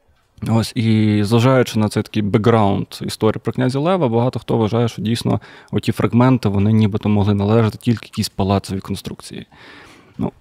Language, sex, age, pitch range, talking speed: Ukrainian, male, 20-39, 105-125 Hz, 155 wpm